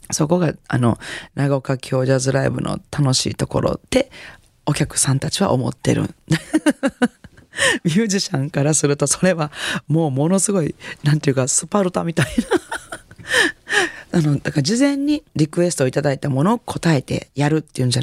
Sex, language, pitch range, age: female, Japanese, 135-190 Hz, 40-59